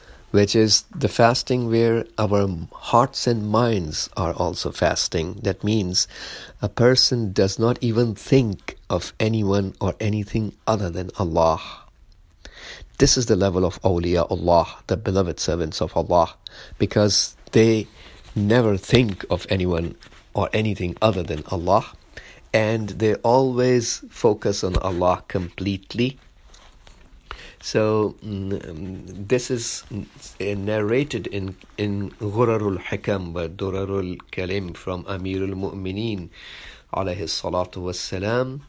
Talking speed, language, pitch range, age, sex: 115 wpm, English, 90-110 Hz, 50-69, male